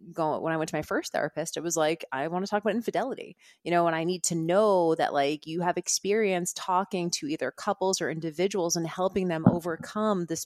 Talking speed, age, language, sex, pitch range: 225 wpm, 30-49, English, female, 160-195 Hz